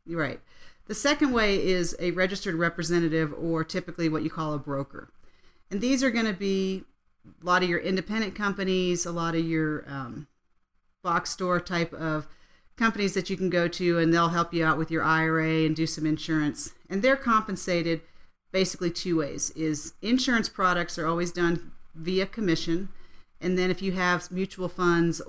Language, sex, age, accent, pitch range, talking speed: English, female, 40-59, American, 160-190 Hz, 180 wpm